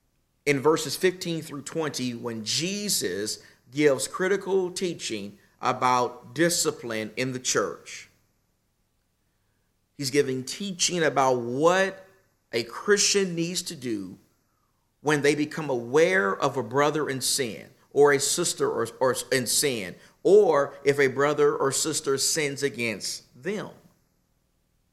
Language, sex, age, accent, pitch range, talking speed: English, male, 50-69, American, 120-165 Hz, 115 wpm